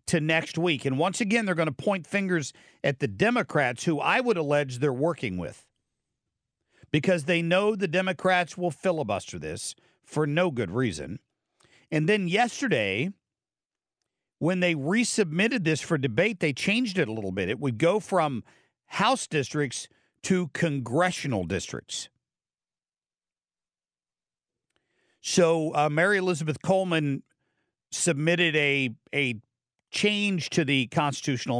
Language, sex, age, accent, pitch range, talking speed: English, male, 50-69, American, 135-180 Hz, 130 wpm